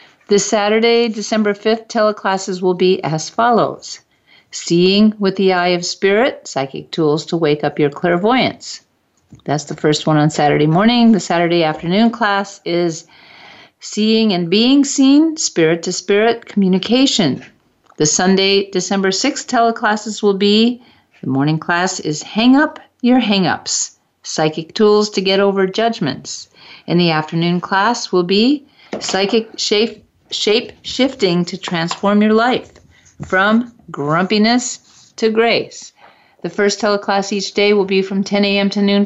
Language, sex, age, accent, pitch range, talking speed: English, female, 50-69, American, 180-220 Hz, 140 wpm